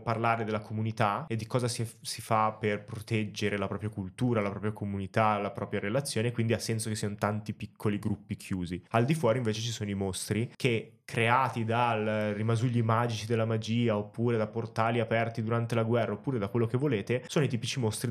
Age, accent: 20-39, native